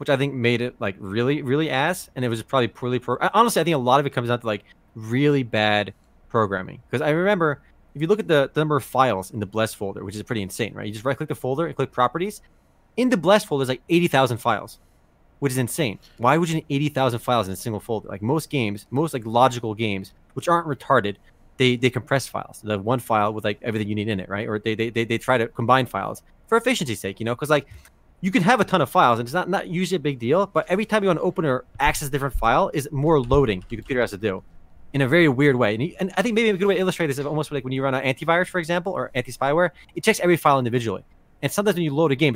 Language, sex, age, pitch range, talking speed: English, male, 20-39, 115-165 Hz, 280 wpm